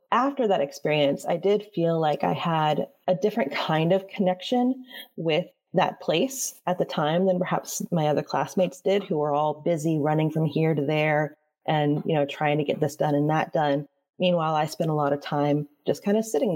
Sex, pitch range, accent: female, 155-190 Hz, American